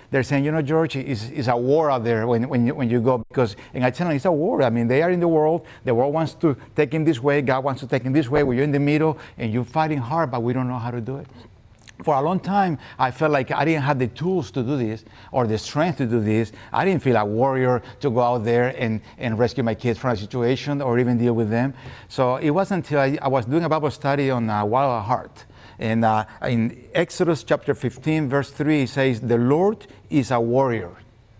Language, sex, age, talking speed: English, male, 50-69, 265 wpm